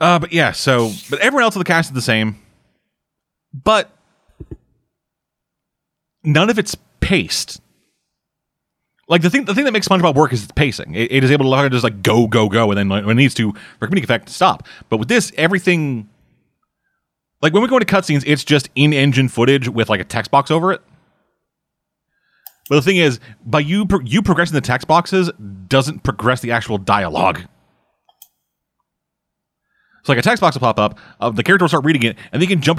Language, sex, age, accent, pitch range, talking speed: English, male, 30-49, American, 115-160 Hz, 200 wpm